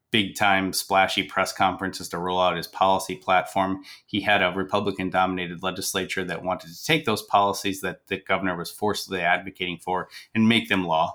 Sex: male